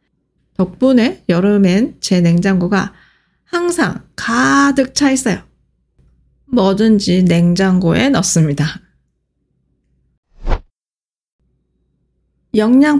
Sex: female